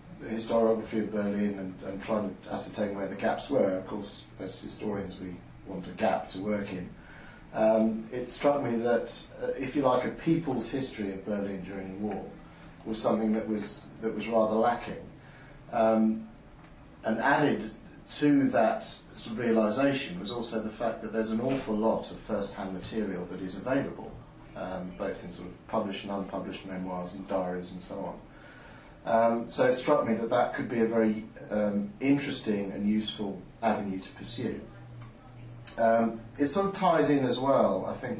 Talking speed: 180 wpm